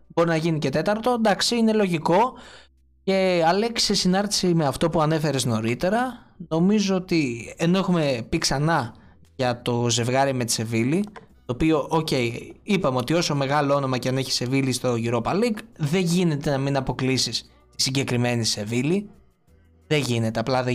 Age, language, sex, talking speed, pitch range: 20-39, Greek, male, 160 wpm, 125-175 Hz